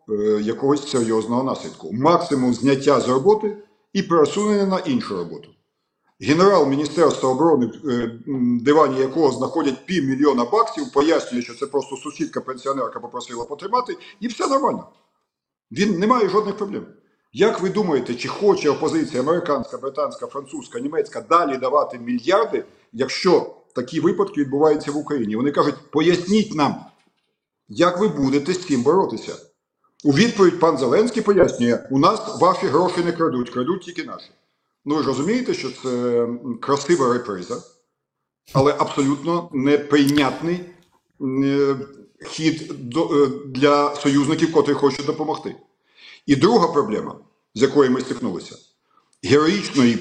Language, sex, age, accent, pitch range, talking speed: Ukrainian, male, 50-69, native, 135-200 Hz, 125 wpm